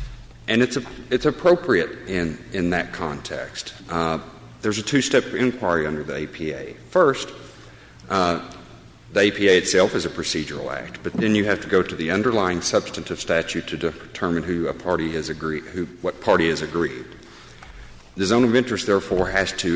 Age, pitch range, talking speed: 50-69, 75-95 Hz, 175 wpm